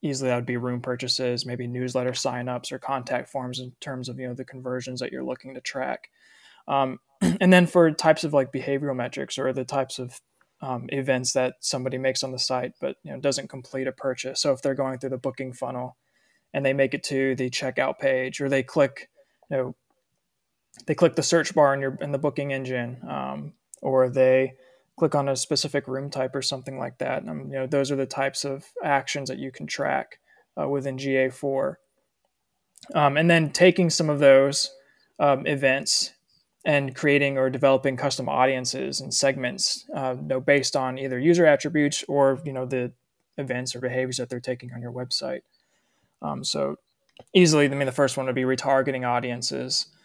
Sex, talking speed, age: male, 195 wpm, 20-39